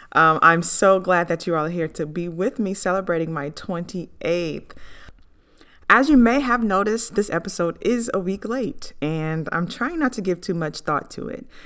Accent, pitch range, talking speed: American, 155-195 Hz, 190 wpm